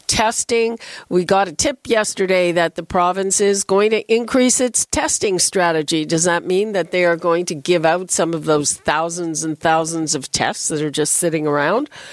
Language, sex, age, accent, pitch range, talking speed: English, female, 50-69, American, 175-220 Hz, 195 wpm